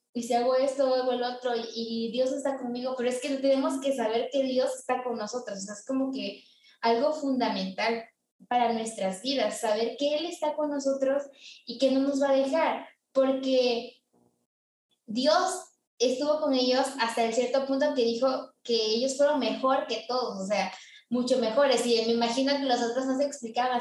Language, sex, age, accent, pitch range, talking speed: Spanish, female, 20-39, Mexican, 230-275 Hz, 185 wpm